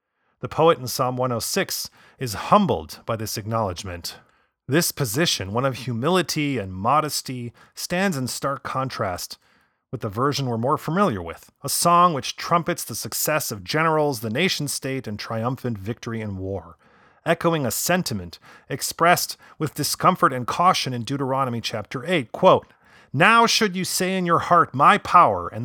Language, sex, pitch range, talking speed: English, male, 110-155 Hz, 155 wpm